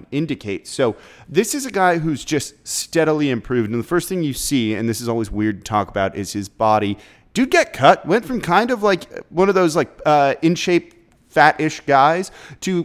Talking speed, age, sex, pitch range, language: 210 wpm, 30-49, male, 115-150 Hz, English